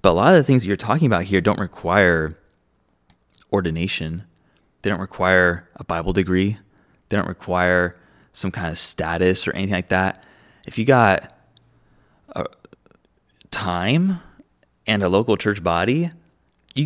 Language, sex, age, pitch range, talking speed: English, male, 20-39, 85-105 Hz, 150 wpm